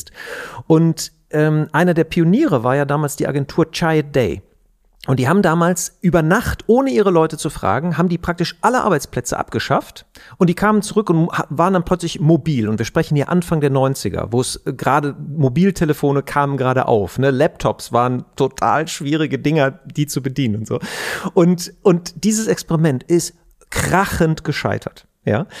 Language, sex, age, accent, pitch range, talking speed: German, male, 40-59, German, 125-165 Hz, 165 wpm